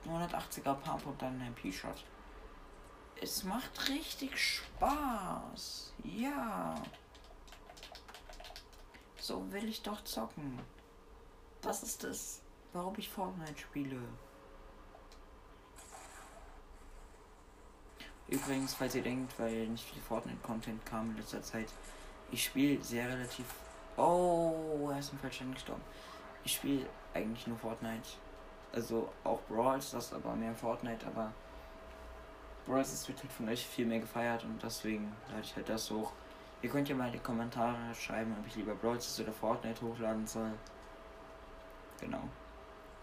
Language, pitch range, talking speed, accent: German, 115-140 Hz, 125 wpm, German